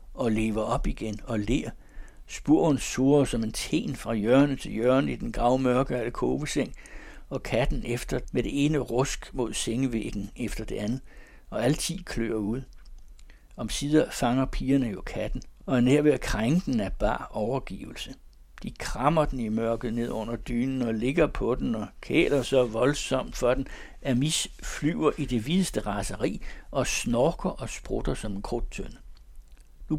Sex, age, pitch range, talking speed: male, 60-79, 110-145 Hz, 165 wpm